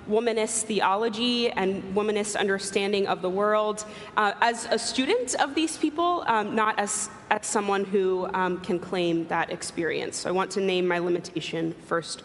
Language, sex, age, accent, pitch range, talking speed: English, female, 20-39, American, 190-235 Hz, 160 wpm